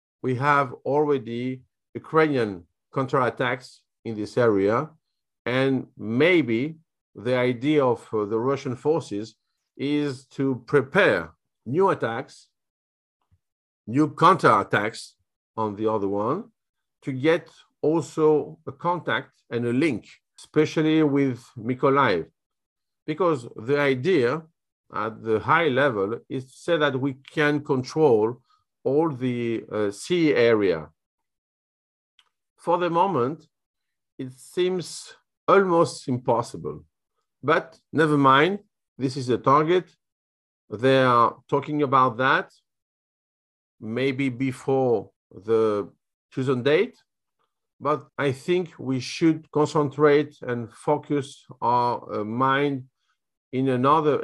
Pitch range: 115-150 Hz